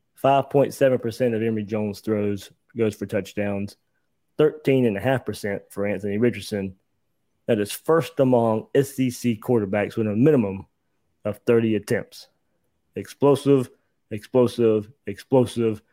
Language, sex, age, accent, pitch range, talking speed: English, male, 20-39, American, 110-130 Hz, 100 wpm